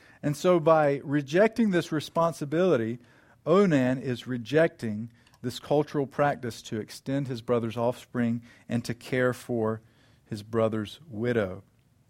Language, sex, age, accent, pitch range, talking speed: English, male, 50-69, American, 115-145 Hz, 120 wpm